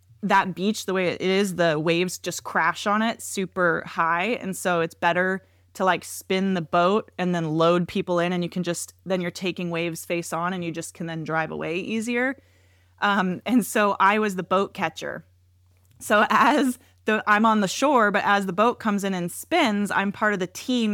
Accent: American